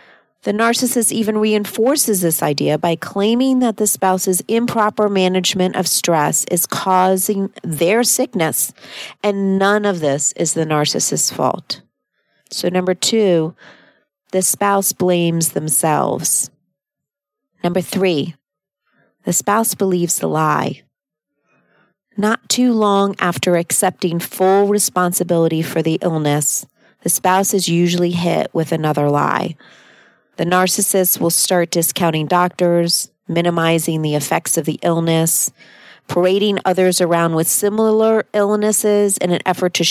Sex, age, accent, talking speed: female, 40-59, American, 120 wpm